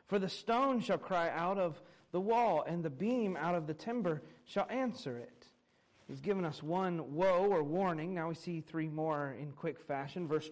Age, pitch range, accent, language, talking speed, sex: 40-59, 165-215 Hz, American, English, 200 wpm, male